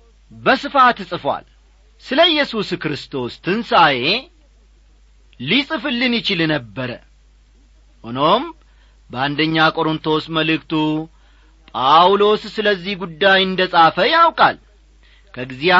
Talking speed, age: 70 wpm, 40-59